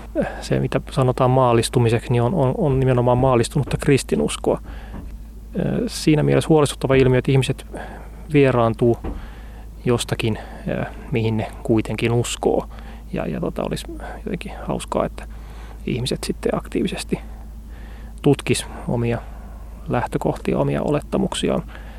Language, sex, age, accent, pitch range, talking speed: Finnish, male, 30-49, native, 115-160 Hz, 105 wpm